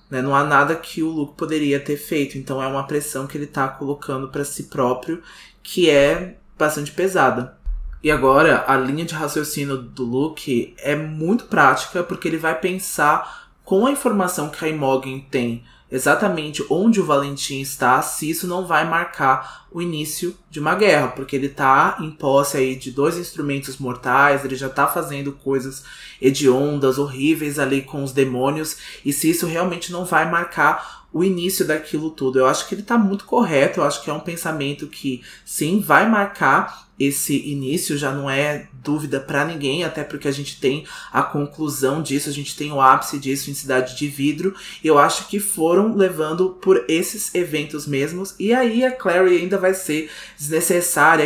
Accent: Brazilian